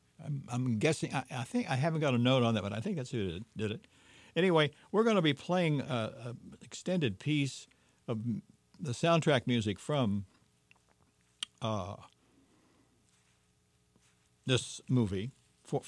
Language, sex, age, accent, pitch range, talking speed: English, male, 60-79, American, 100-135 Hz, 130 wpm